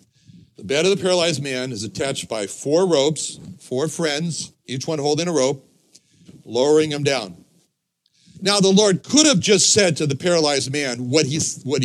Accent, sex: American, male